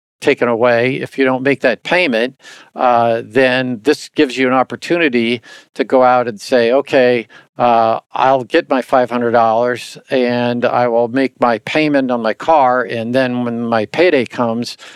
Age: 50-69